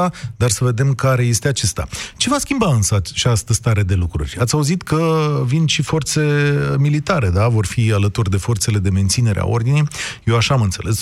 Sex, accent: male, native